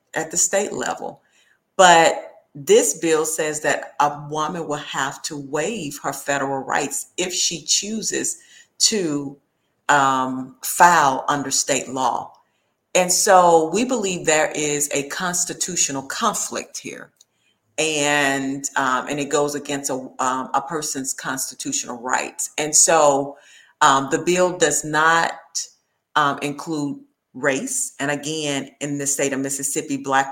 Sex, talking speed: female, 135 wpm